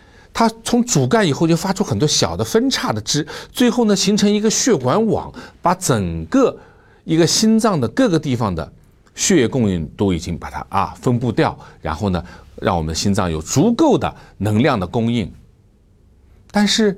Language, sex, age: Chinese, male, 50-69